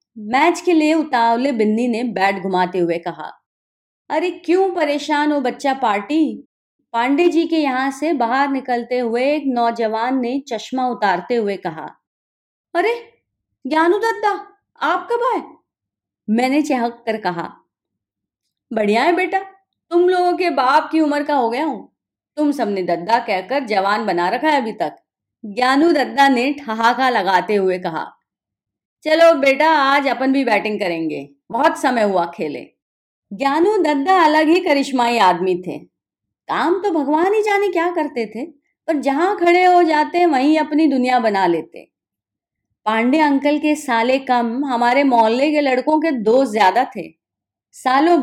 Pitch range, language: 220-315 Hz, Hindi